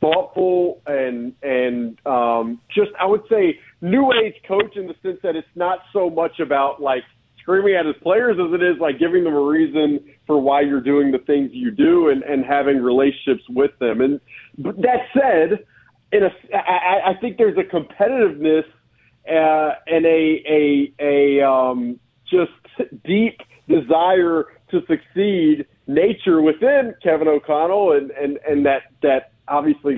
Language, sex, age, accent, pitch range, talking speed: English, male, 40-59, American, 140-190 Hz, 160 wpm